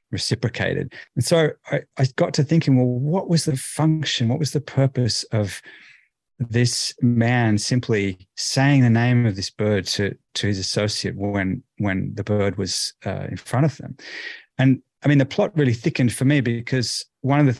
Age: 30-49